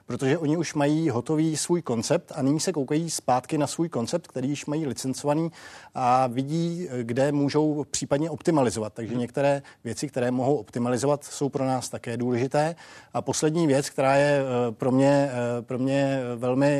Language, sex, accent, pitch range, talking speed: Czech, male, native, 125-145 Hz, 165 wpm